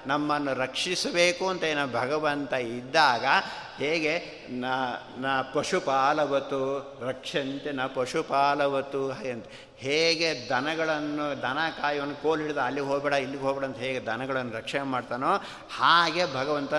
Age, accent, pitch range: 60-79, native, 130-155 Hz